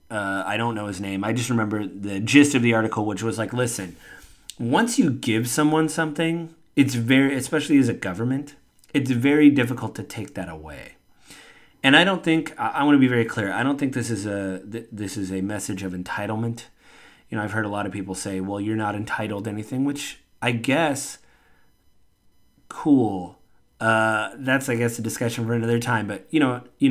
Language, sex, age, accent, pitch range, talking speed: English, male, 30-49, American, 100-130 Hz, 205 wpm